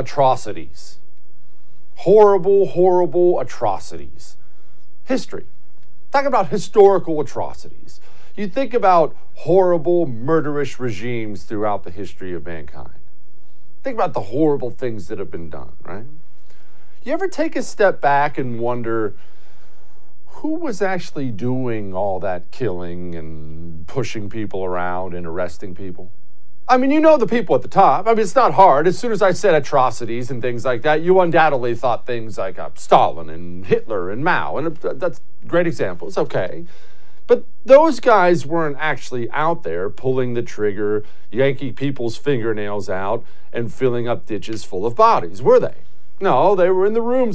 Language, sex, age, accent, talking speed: English, male, 50-69, American, 155 wpm